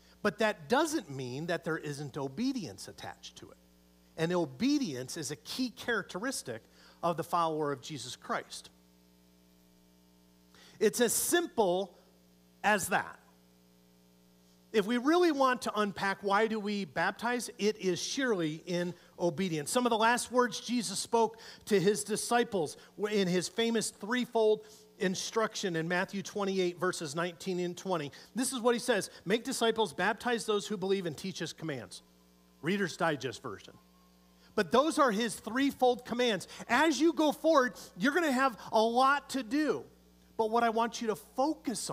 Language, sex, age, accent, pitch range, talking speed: English, male, 40-59, American, 140-230 Hz, 155 wpm